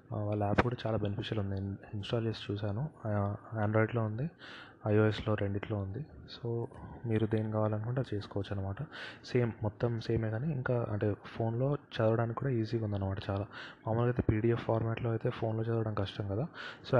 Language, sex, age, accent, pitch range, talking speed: Telugu, male, 20-39, native, 105-115 Hz, 150 wpm